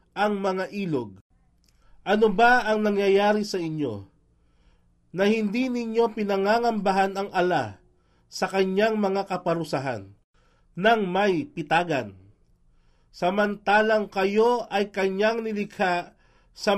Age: 40-59